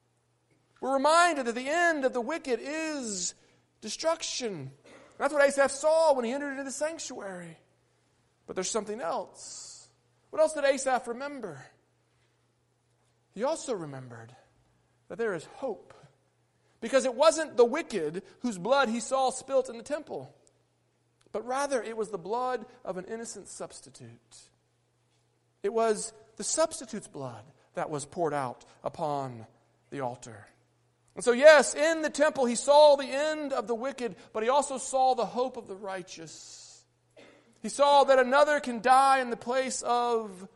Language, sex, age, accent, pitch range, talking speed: English, male, 40-59, American, 210-280 Hz, 150 wpm